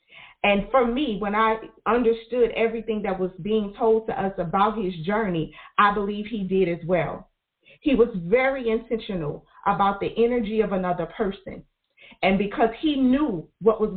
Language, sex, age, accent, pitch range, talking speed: English, female, 40-59, American, 180-225 Hz, 165 wpm